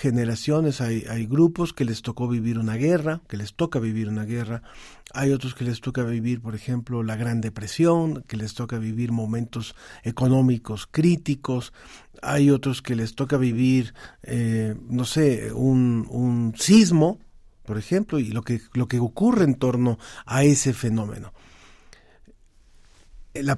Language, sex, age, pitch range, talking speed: Spanish, male, 50-69, 120-160 Hz, 155 wpm